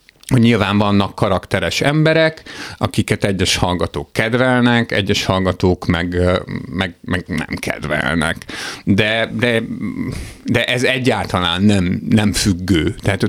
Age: 50-69